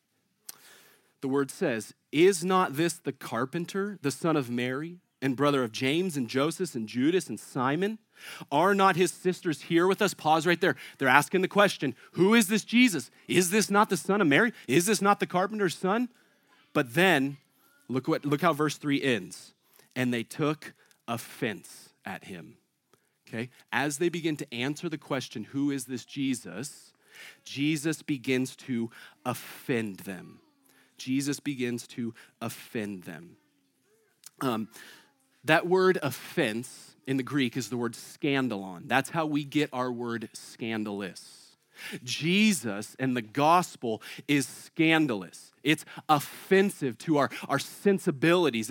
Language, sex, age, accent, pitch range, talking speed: English, male, 30-49, American, 135-180 Hz, 150 wpm